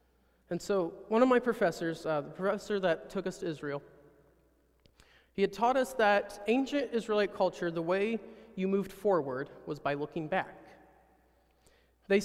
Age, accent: 30-49, American